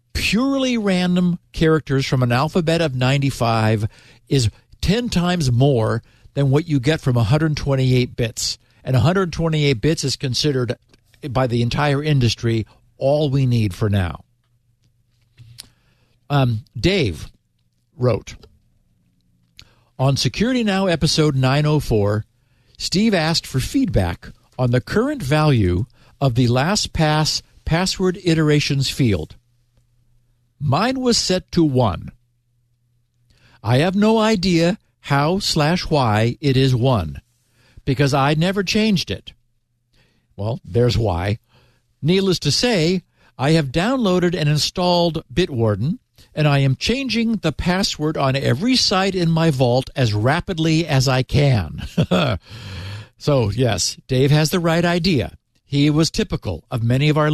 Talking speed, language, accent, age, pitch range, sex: 125 wpm, English, American, 60-79, 120-165 Hz, male